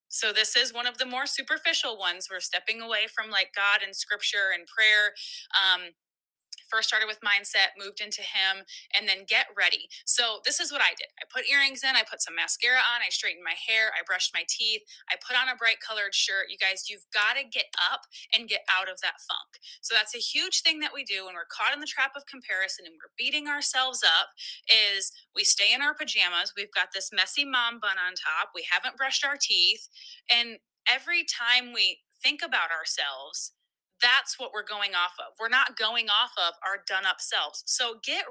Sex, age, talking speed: female, 20-39, 215 wpm